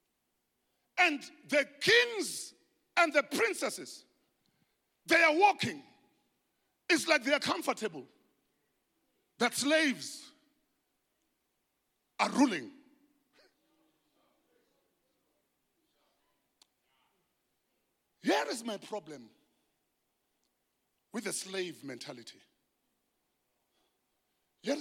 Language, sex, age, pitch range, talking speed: English, male, 50-69, 215-320 Hz, 65 wpm